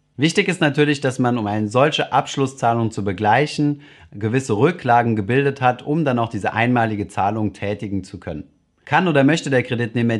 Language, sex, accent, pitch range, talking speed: German, male, German, 110-145 Hz, 170 wpm